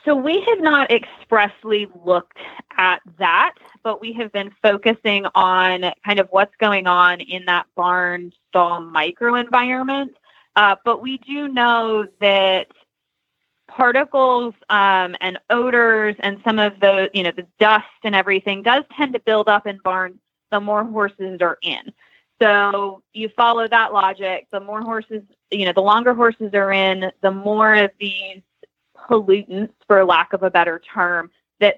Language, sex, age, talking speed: English, female, 20-39, 150 wpm